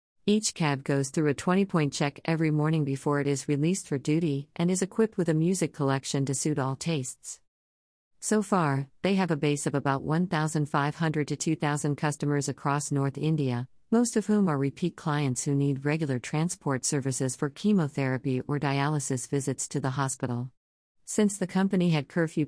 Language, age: English, 40-59